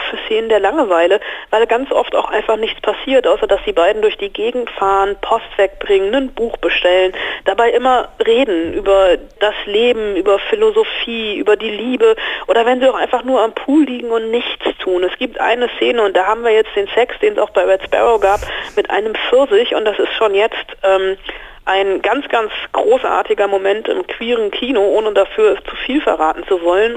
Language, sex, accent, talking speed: German, female, German, 200 wpm